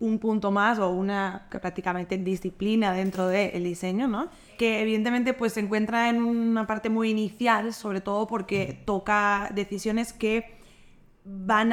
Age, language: 20-39, Spanish